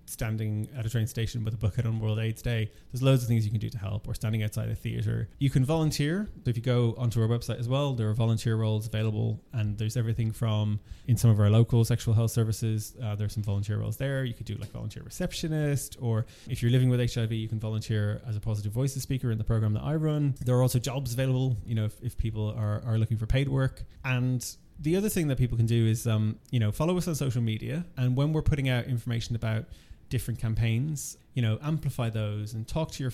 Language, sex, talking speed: English, male, 250 wpm